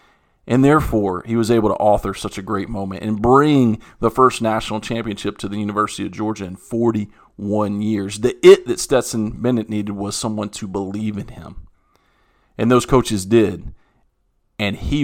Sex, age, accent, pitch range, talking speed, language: male, 40-59, American, 100-120 Hz, 170 wpm, English